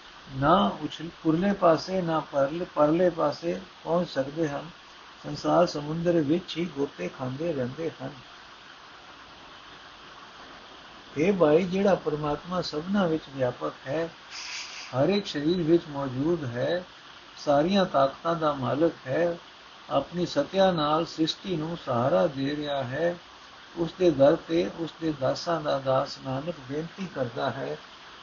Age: 60-79